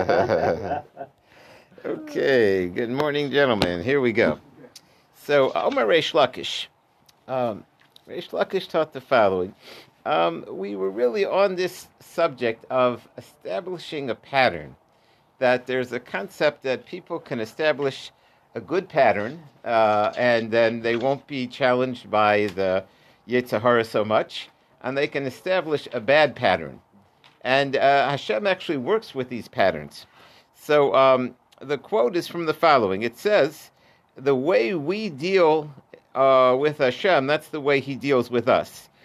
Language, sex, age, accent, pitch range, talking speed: English, male, 50-69, American, 120-160 Hz, 140 wpm